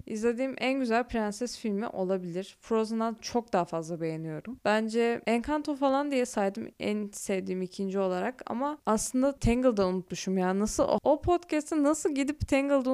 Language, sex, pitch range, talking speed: Turkish, female, 210-265 Hz, 150 wpm